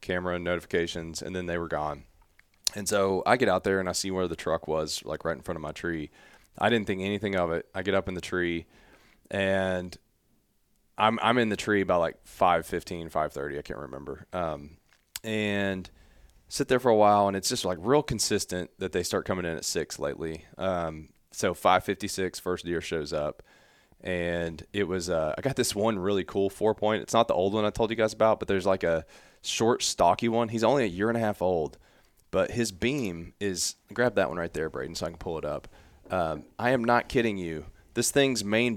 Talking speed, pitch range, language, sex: 225 wpm, 85-105 Hz, English, male